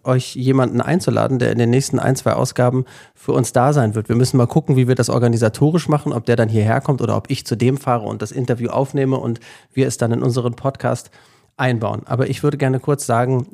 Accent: German